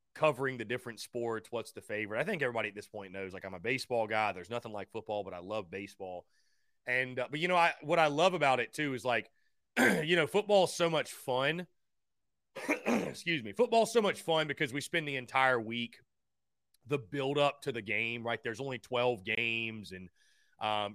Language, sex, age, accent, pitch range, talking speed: English, male, 30-49, American, 115-170 Hz, 210 wpm